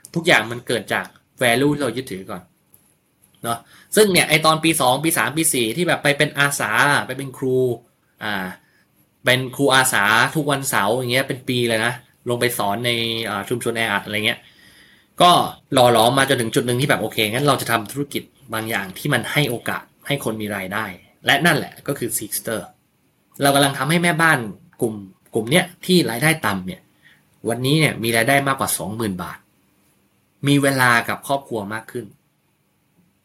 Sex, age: male, 20-39